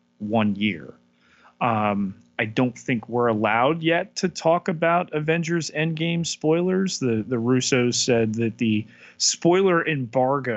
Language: English